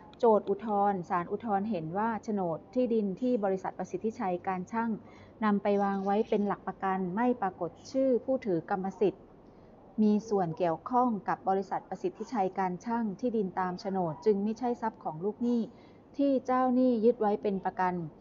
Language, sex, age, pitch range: Thai, female, 30-49, 185-230 Hz